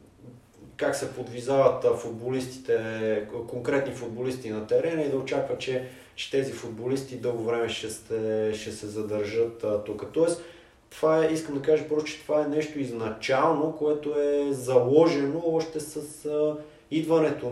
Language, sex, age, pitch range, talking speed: Bulgarian, male, 20-39, 115-150 Hz, 145 wpm